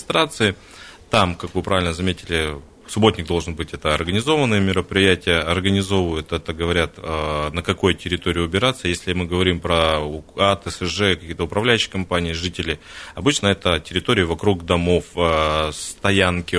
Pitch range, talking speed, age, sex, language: 80-100 Hz, 120 wpm, 20-39, male, Russian